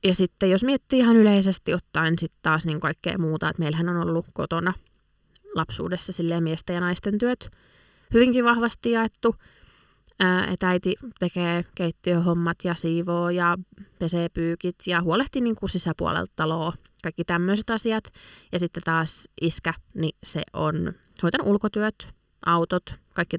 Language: Finnish